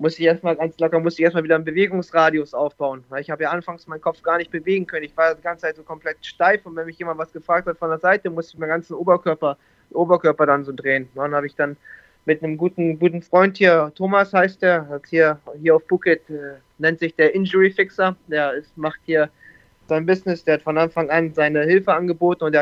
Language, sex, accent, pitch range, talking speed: German, male, German, 155-175 Hz, 240 wpm